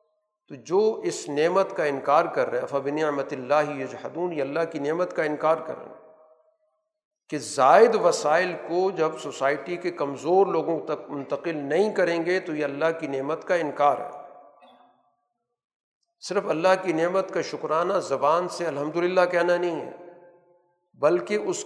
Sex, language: male, Urdu